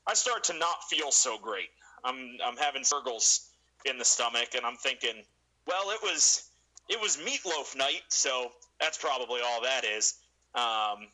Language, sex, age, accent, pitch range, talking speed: English, male, 30-49, American, 110-150 Hz, 165 wpm